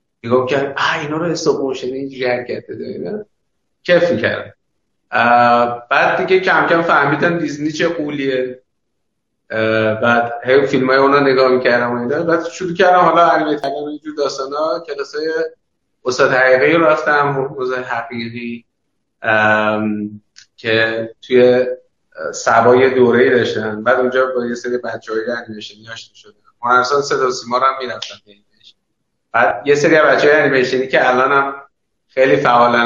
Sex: male